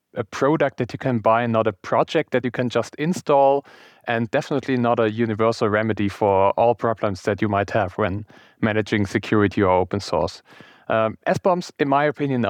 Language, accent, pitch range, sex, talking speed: English, German, 105-130 Hz, male, 180 wpm